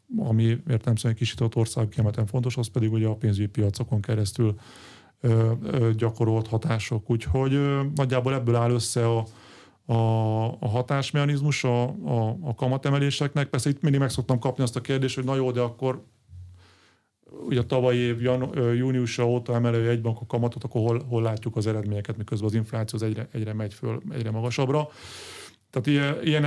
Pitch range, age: 110-130 Hz, 30-49